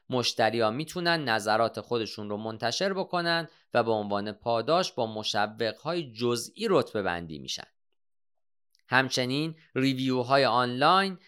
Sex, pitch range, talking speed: male, 115-170 Hz, 105 wpm